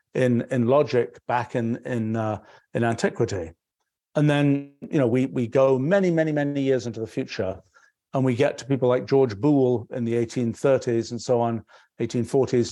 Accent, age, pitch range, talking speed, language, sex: British, 50-69, 120-140 Hz, 180 wpm, English, male